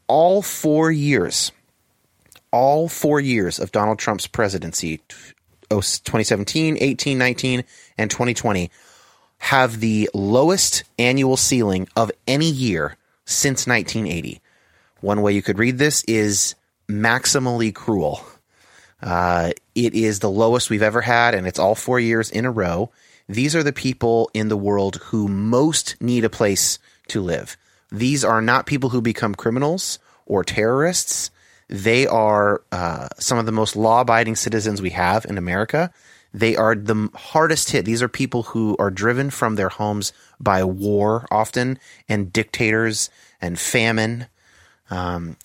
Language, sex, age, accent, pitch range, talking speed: English, male, 30-49, American, 105-125 Hz, 145 wpm